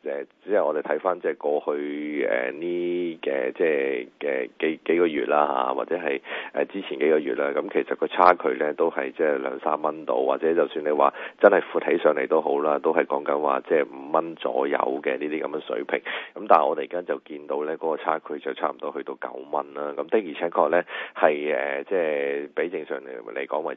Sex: male